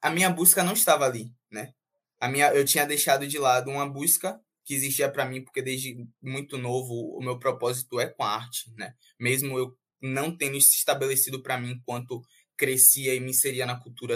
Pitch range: 125-145 Hz